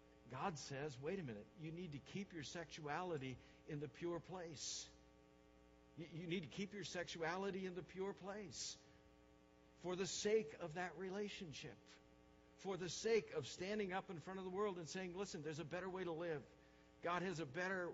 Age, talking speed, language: 60-79, 185 wpm, English